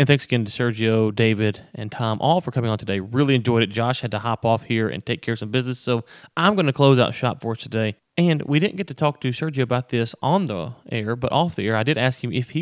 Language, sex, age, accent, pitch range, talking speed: English, male, 30-49, American, 115-145 Hz, 290 wpm